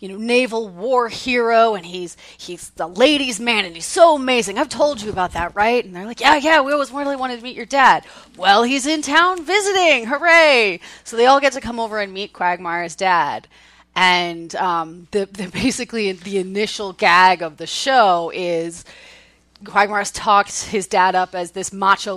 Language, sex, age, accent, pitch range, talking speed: English, female, 30-49, American, 180-240 Hz, 190 wpm